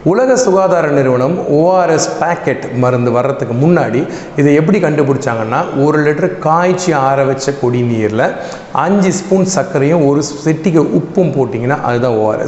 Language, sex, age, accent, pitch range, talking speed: Tamil, male, 40-59, native, 130-170 Hz, 115 wpm